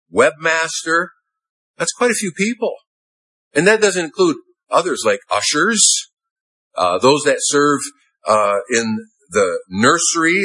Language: English